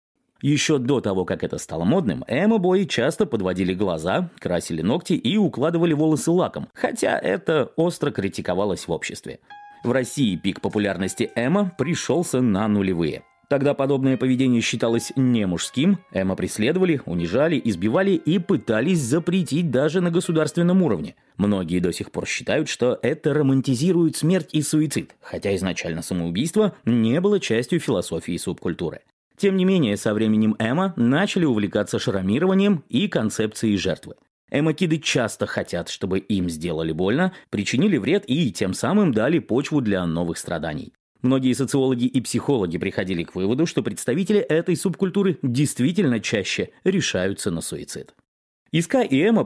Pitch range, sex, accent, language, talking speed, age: 105-175 Hz, male, native, Russian, 140 wpm, 30-49